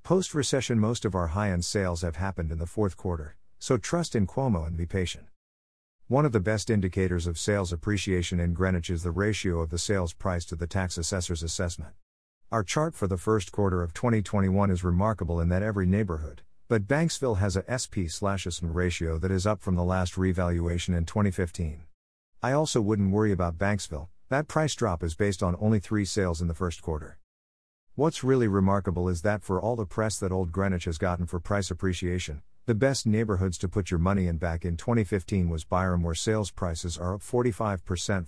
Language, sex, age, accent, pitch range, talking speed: English, male, 50-69, American, 85-105 Hz, 195 wpm